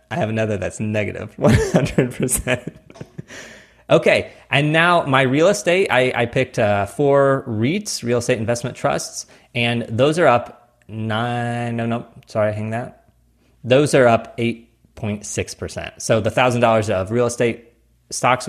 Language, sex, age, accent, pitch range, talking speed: English, male, 20-39, American, 100-130 Hz, 145 wpm